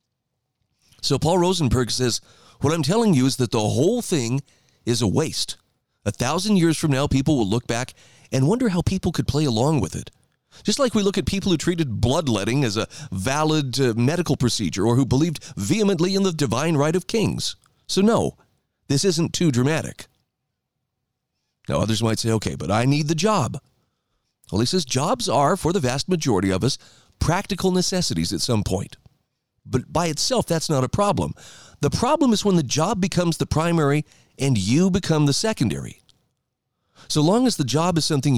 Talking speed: 185 wpm